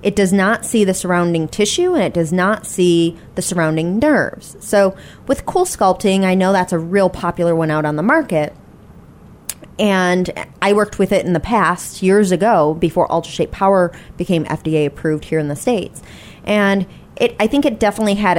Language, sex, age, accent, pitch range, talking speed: English, female, 20-39, American, 170-210 Hz, 185 wpm